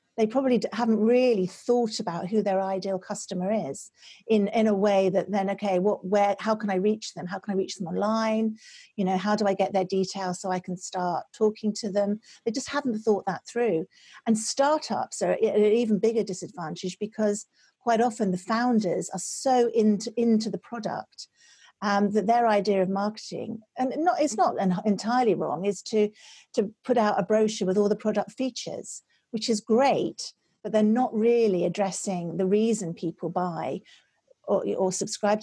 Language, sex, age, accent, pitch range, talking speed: English, female, 50-69, British, 190-225 Hz, 190 wpm